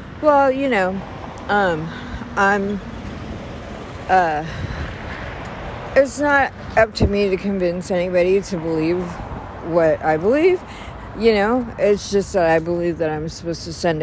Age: 50-69